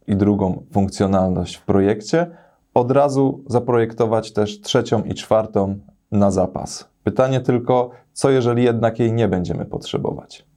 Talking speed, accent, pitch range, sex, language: 130 wpm, native, 95-120 Hz, male, Polish